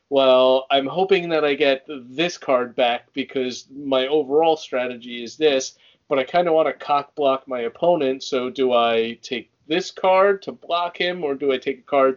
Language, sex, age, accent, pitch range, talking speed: English, male, 40-59, American, 125-150 Hz, 195 wpm